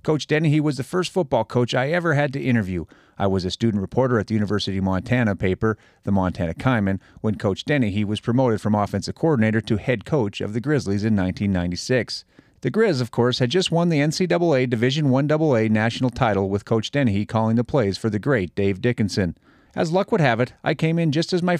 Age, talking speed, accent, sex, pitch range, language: 40-59, 215 wpm, American, male, 100-135 Hz, English